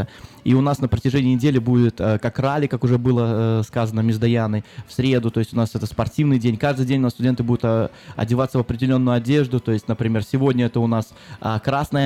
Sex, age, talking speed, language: male, 20-39, 205 wpm, Russian